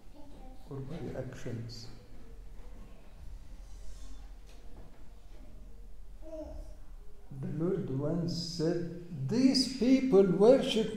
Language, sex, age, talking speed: English, male, 60-79, 55 wpm